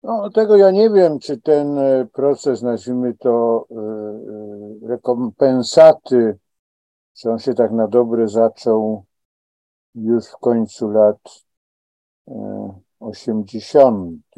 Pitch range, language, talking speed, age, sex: 100-135 Hz, Polish, 100 wpm, 50-69, male